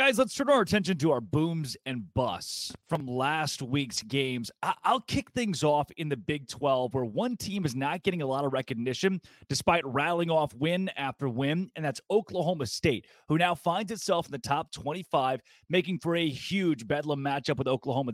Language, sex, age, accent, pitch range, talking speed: English, male, 30-49, American, 140-185 Hz, 190 wpm